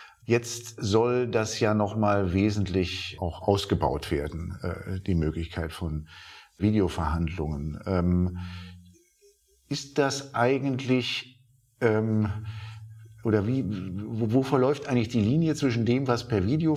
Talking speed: 105 wpm